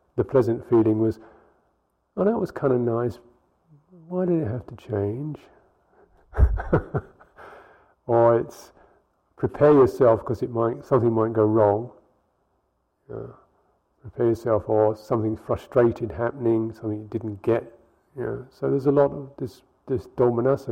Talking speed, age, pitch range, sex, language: 140 wpm, 50-69, 110-130 Hz, male, English